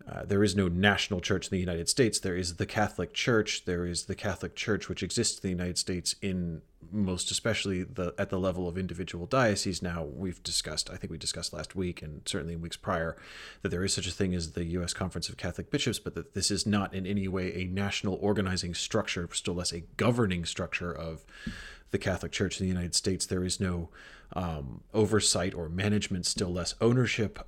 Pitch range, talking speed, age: 90-105 Hz, 215 wpm, 30-49